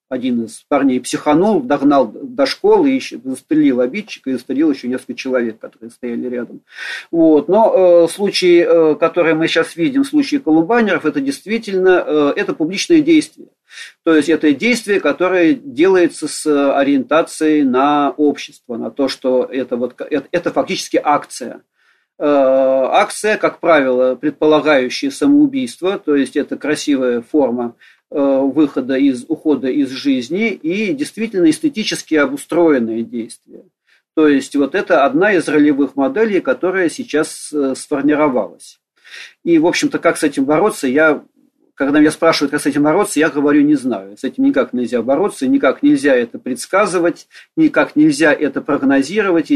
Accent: native